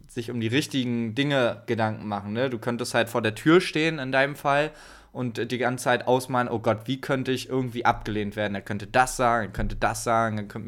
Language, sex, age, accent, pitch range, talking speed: German, male, 20-39, German, 115-135 Hz, 225 wpm